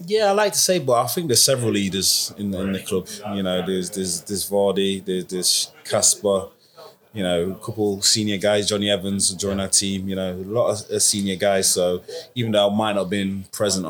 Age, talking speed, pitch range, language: 20-39, 220 wpm, 95-100 Hz, English